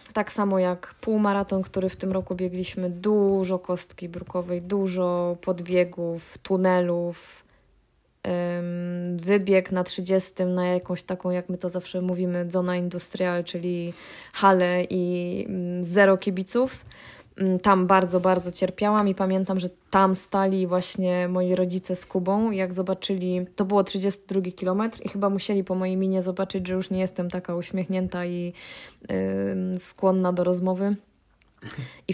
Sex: female